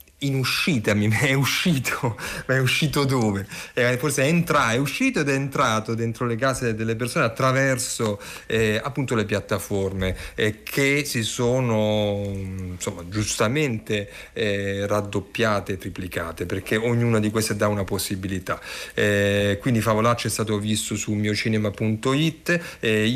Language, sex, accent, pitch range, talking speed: Italian, male, native, 105-140 Hz, 140 wpm